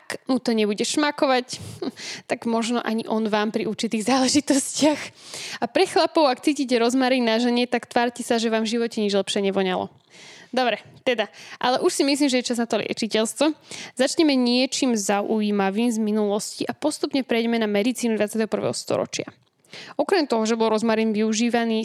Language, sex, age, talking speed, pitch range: Slovak, female, 10-29, 170 wpm, 210-255 Hz